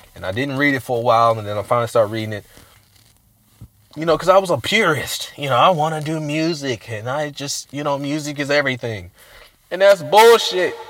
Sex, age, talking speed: male, 20-39, 220 wpm